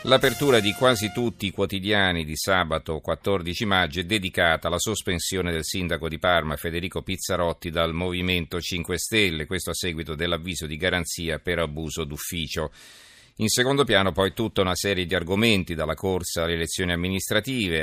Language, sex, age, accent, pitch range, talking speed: Italian, male, 40-59, native, 80-100 Hz, 160 wpm